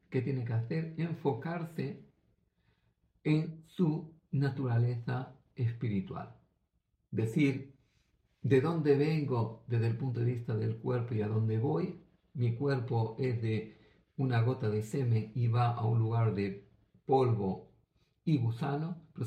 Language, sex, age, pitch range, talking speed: Greek, male, 50-69, 115-140 Hz, 130 wpm